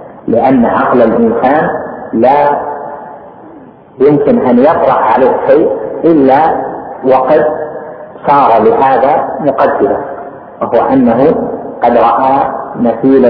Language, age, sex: Arabic, 50-69, male